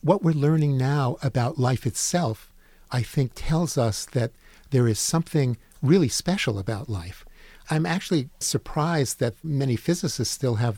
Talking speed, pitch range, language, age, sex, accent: 150 wpm, 115-145 Hz, English, 50-69, male, American